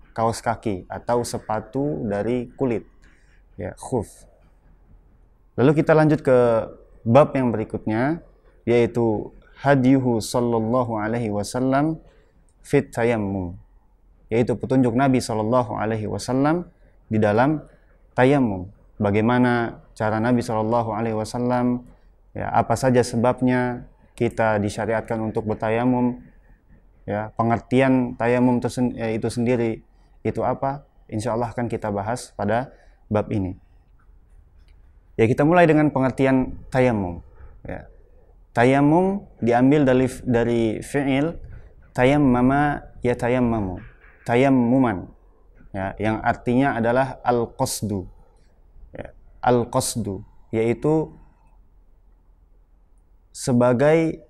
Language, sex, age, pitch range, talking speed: Indonesian, male, 20-39, 100-125 Hz, 100 wpm